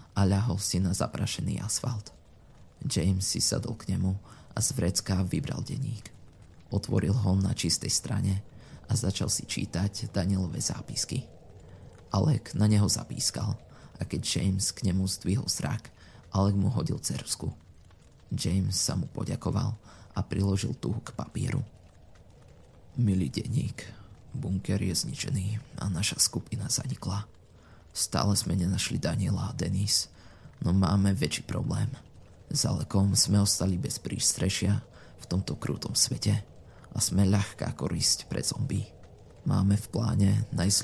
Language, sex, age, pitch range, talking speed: Slovak, male, 20-39, 95-110 Hz, 130 wpm